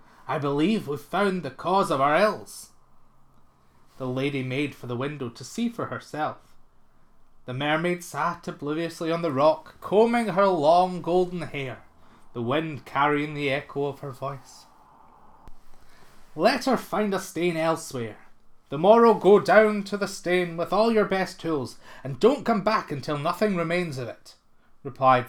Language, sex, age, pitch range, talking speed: English, male, 30-49, 135-195 Hz, 160 wpm